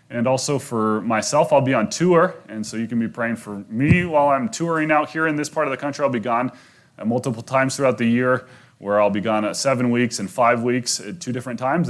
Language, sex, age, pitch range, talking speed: English, male, 30-49, 105-135 Hz, 245 wpm